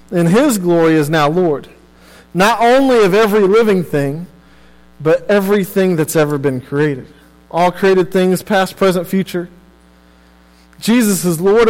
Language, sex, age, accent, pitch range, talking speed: English, male, 40-59, American, 140-205 Hz, 140 wpm